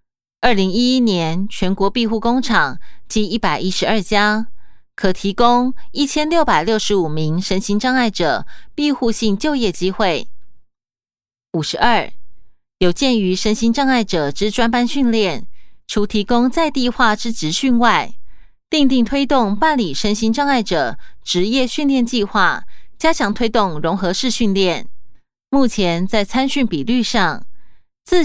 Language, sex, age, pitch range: Chinese, female, 20-39, 185-245 Hz